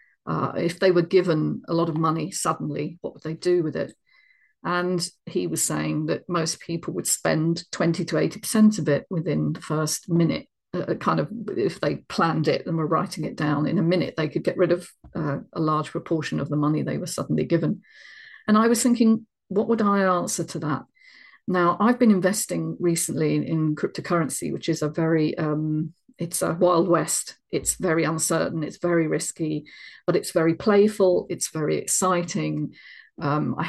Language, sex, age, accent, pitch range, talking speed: English, female, 40-59, British, 155-180 Hz, 190 wpm